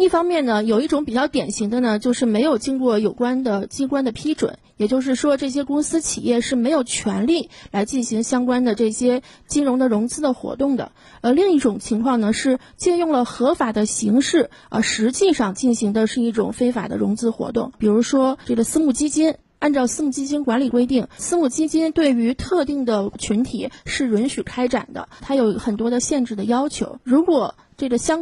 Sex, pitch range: female, 225-280 Hz